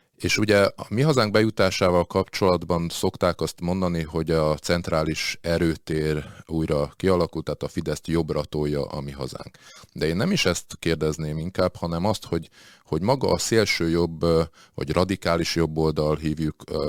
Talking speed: 155 wpm